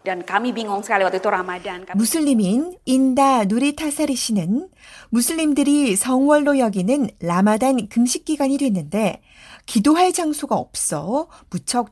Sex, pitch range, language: female, 200-280 Hz, Korean